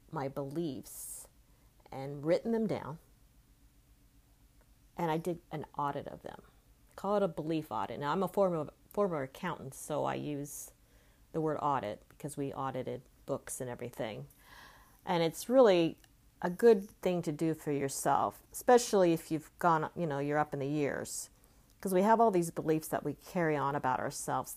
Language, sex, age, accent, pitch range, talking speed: English, female, 40-59, American, 140-175 Hz, 170 wpm